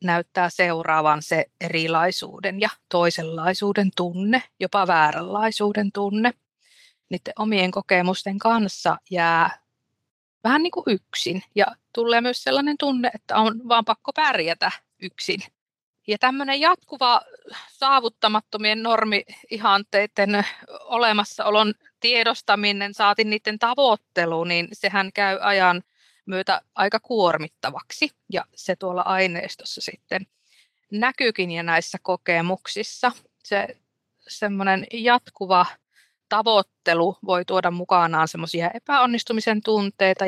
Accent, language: native, Finnish